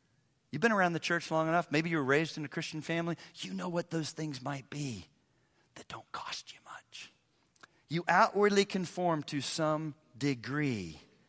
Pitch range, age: 120-170 Hz, 40-59